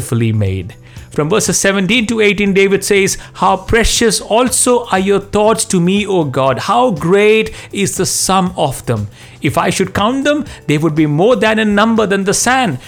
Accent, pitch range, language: Indian, 135-205 Hz, English